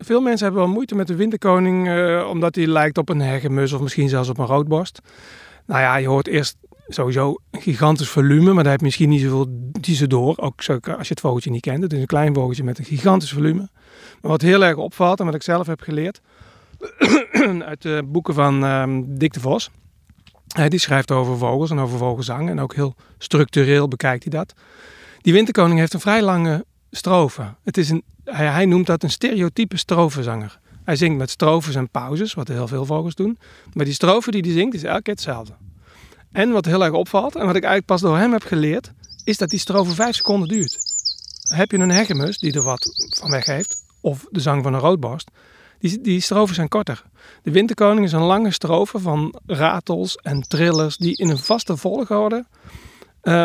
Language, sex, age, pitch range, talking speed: Dutch, male, 40-59, 140-190 Hz, 205 wpm